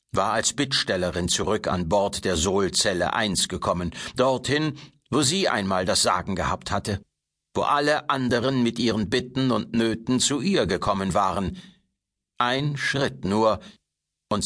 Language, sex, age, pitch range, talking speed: German, male, 60-79, 90-140 Hz, 140 wpm